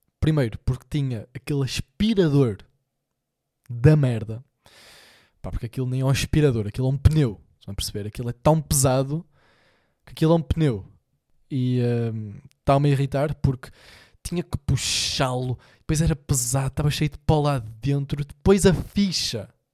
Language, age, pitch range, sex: Portuguese, 20-39, 125-150 Hz, male